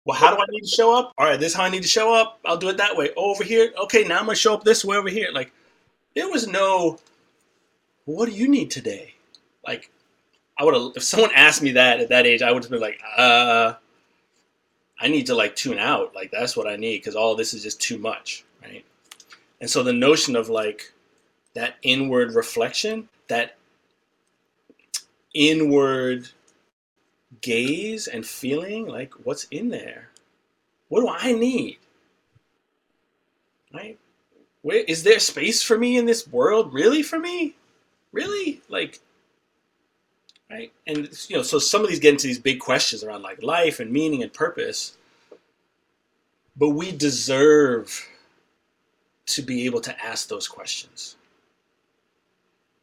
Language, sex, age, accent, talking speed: English, male, 30-49, American, 170 wpm